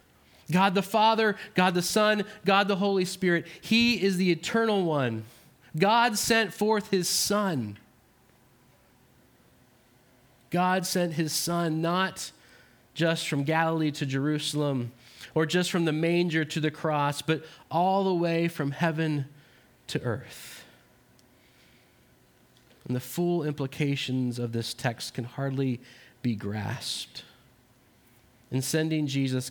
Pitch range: 125-170 Hz